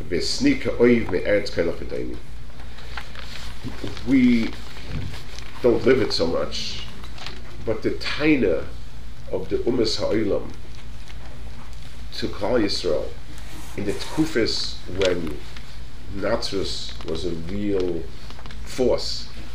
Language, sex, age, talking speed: English, male, 40-59, 75 wpm